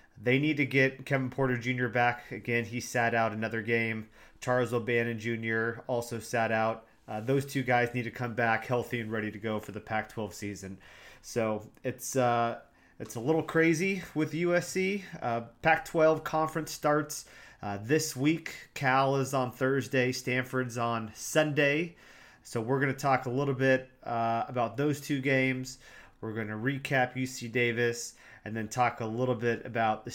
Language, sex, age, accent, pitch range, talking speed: English, male, 30-49, American, 110-130 Hz, 175 wpm